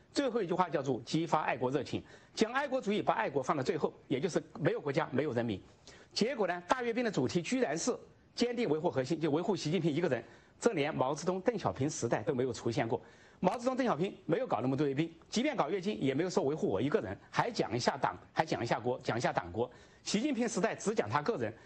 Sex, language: male, English